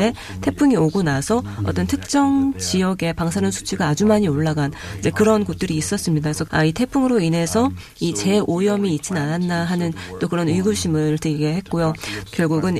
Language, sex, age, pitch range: Korean, female, 30-49, 155-210 Hz